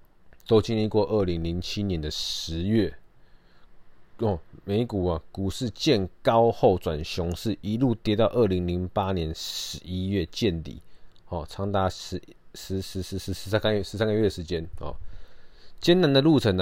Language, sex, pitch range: Chinese, male, 85-105 Hz